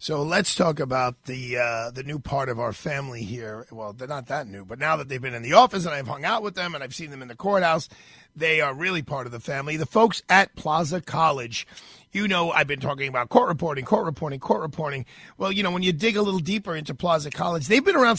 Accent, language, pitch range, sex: American, English, 145-200 Hz, male